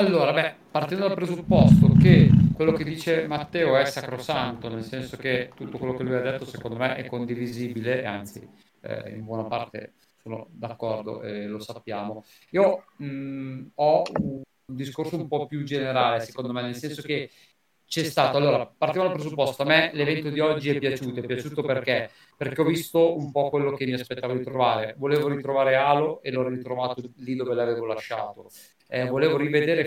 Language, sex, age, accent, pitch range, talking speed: Italian, male, 40-59, native, 125-155 Hz, 180 wpm